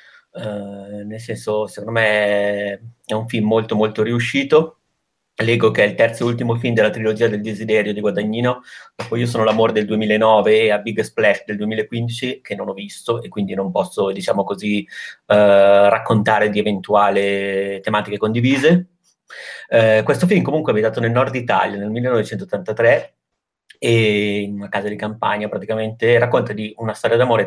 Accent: native